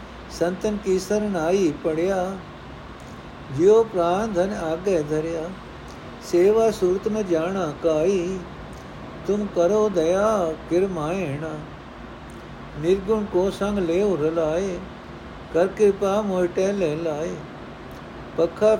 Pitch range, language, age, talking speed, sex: 165-200 Hz, Punjabi, 60-79, 100 wpm, male